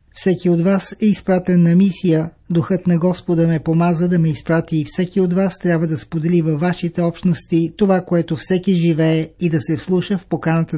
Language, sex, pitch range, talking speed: Bulgarian, male, 160-180 Hz, 195 wpm